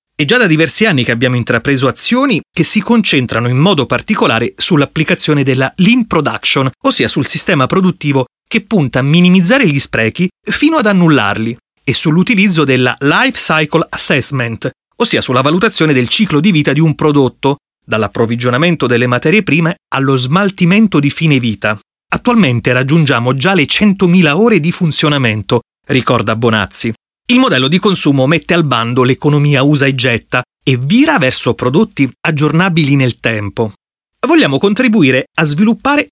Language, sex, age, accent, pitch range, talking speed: Italian, male, 30-49, native, 130-180 Hz, 150 wpm